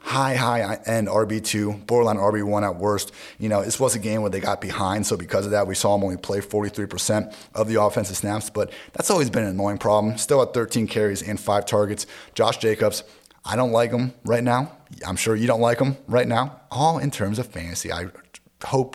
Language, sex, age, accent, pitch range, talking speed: English, male, 30-49, American, 100-115 Hz, 215 wpm